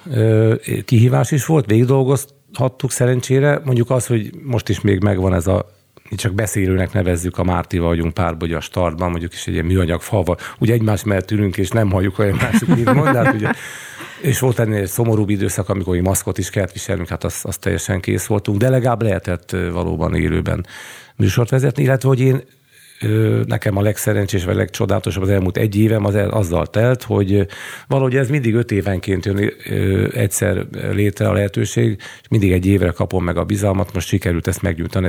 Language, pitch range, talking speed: Hungarian, 95-115 Hz, 175 wpm